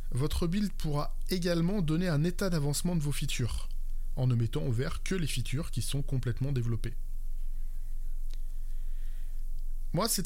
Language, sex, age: French, male, 20-39